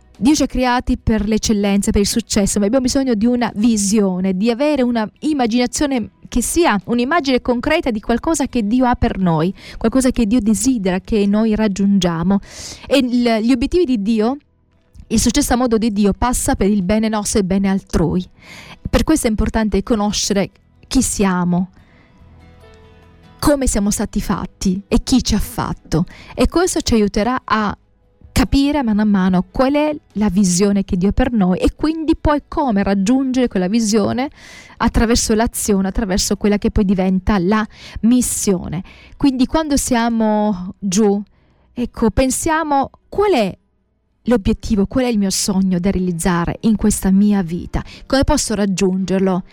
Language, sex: Italian, female